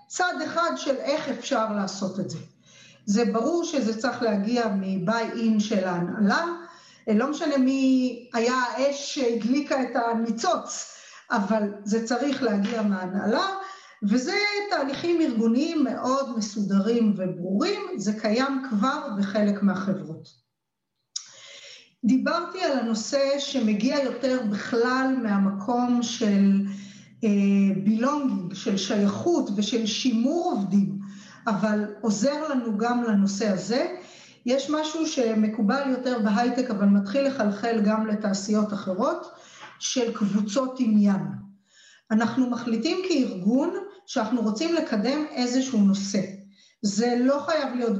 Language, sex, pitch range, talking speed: Hebrew, female, 210-275 Hz, 110 wpm